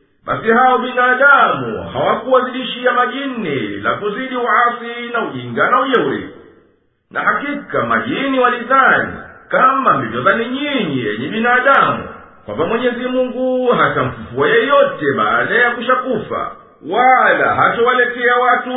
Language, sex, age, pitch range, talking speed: Swahili, male, 50-69, 235-255 Hz, 110 wpm